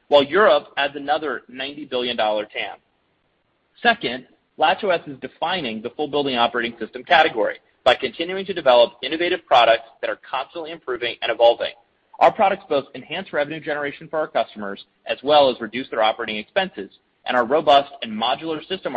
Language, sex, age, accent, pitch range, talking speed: English, male, 30-49, American, 120-160 Hz, 160 wpm